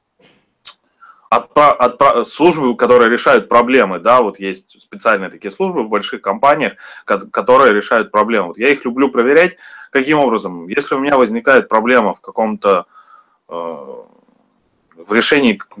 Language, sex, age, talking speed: Russian, male, 20-39, 135 wpm